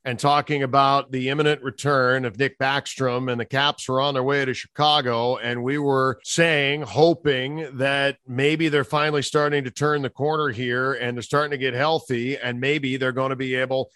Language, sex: English, male